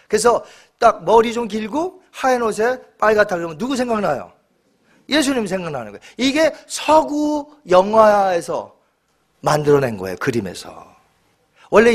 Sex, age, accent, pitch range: male, 40-59, native, 185-255 Hz